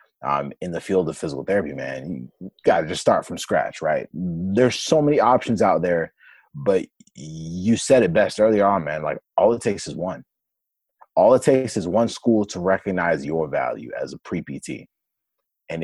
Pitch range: 100-130 Hz